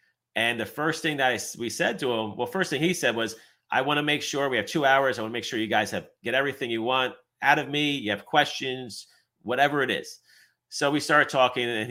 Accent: American